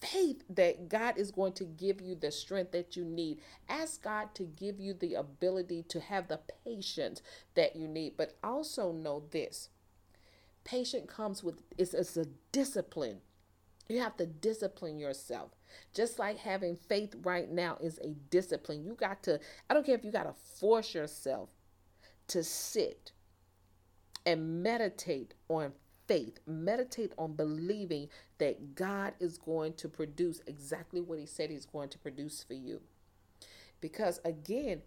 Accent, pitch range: American, 150-215 Hz